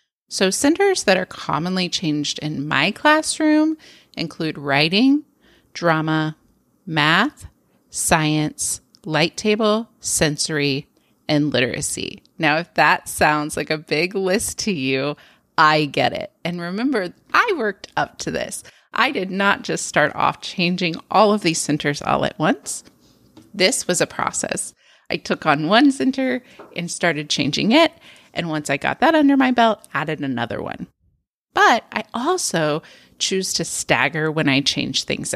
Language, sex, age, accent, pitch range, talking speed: English, female, 30-49, American, 150-210 Hz, 150 wpm